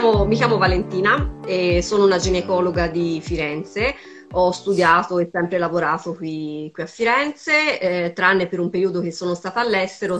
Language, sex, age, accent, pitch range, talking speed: Italian, female, 30-49, native, 175-195 Hz, 160 wpm